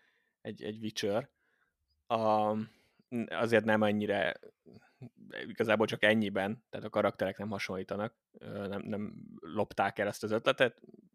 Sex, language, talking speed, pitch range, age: male, Hungarian, 120 wpm, 100-115 Hz, 20-39